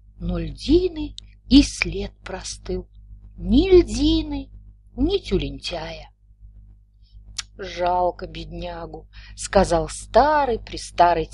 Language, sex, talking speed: Russian, female, 80 wpm